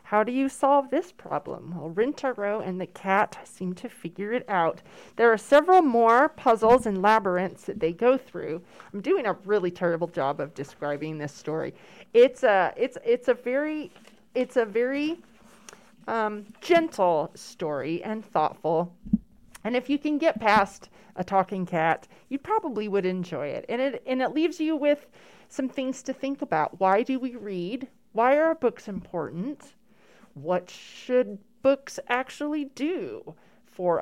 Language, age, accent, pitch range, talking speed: English, 30-49, American, 170-260 Hz, 160 wpm